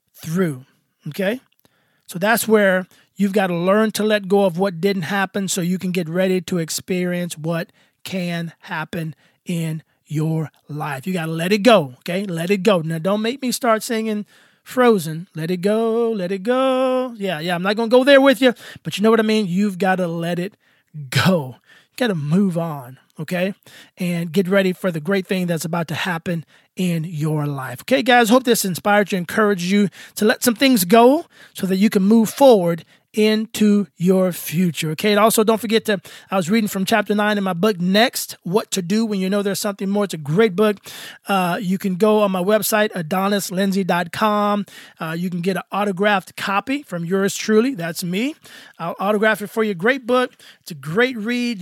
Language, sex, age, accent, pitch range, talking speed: English, male, 20-39, American, 175-215 Hz, 200 wpm